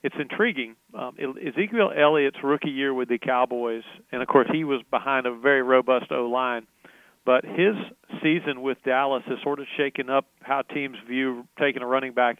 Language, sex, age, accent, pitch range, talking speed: English, male, 40-59, American, 125-140 Hz, 180 wpm